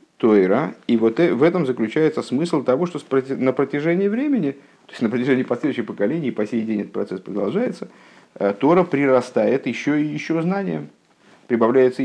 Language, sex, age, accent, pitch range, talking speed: Russian, male, 50-69, native, 100-130 Hz, 155 wpm